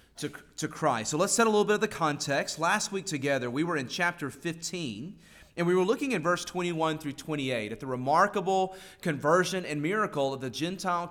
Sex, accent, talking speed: male, American, 205 wpm